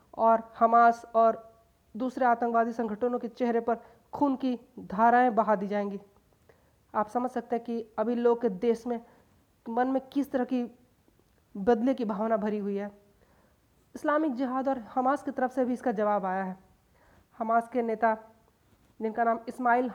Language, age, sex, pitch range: Hindi, 20-39, female, 220-255 Hz